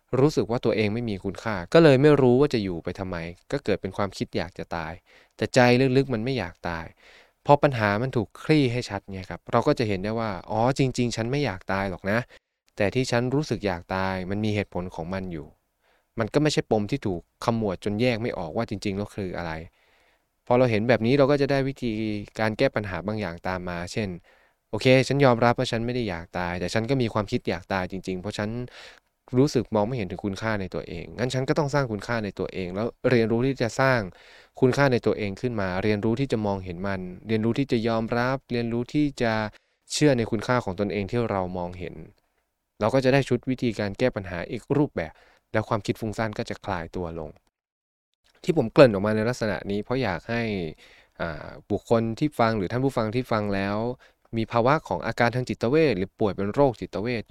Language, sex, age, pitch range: Thai, male, 20-39, 100-125 Hz